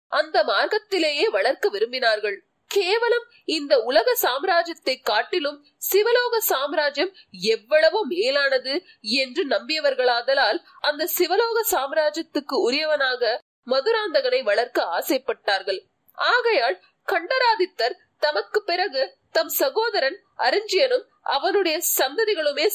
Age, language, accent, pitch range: 30-49, Tamil, native, 285-435 Hz